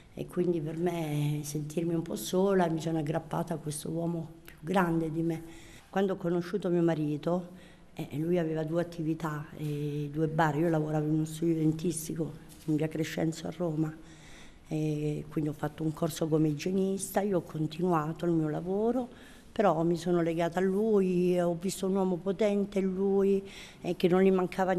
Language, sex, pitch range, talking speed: Italian, female, 165-190 Hz, 175 wpm